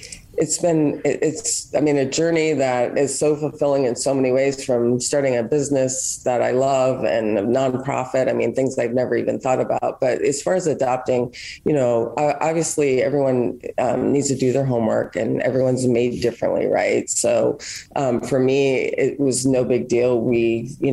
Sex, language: female, English